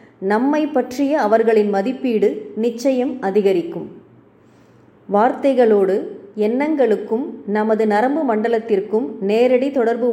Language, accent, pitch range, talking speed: Tamil, native, 210-255 Hz, 75 wpm